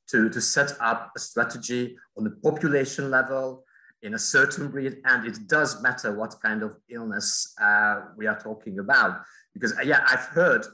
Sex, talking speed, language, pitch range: male, 180 wpm, English, 110-140 Hz